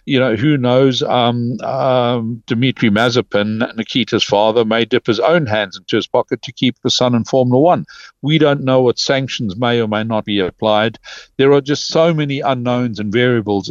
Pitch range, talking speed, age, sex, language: 105-125 Hz, 195 wpm, 60-79, male, English